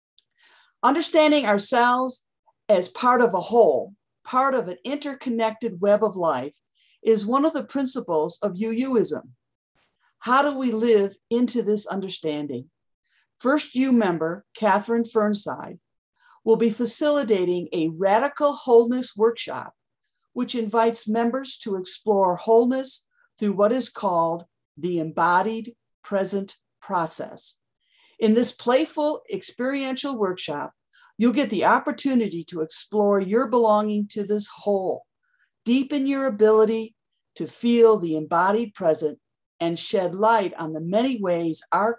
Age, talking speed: 50-69, 125 wpm